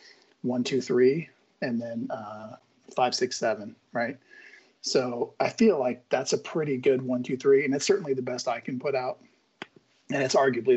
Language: English